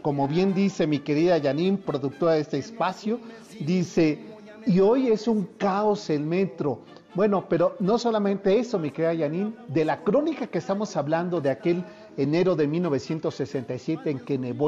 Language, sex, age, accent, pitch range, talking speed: Spanish, male, 40-59, Mexican, 155-195 Hz, 165 wpm